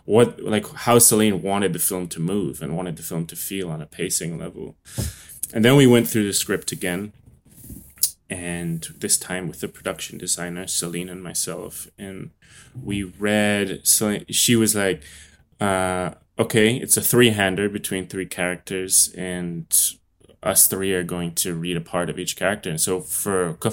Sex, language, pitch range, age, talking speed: male, English, 85-105 Hz, 20-39, 170 wpm